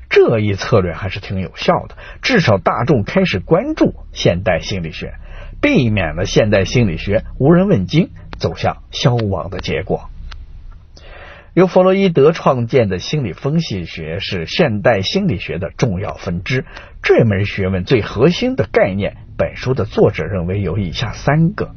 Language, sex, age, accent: Chinese, male, 50-69, native